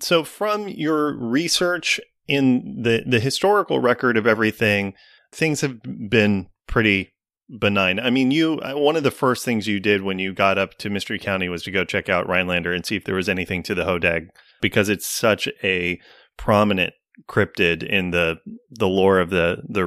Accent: American